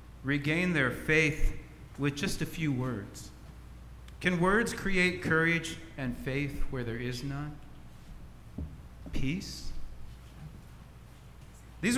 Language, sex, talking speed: English, male, 100 wpm